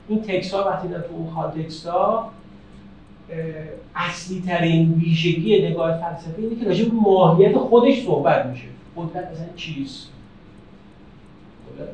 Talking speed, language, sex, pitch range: 120 wpm, Persian, male, 160-220 Hz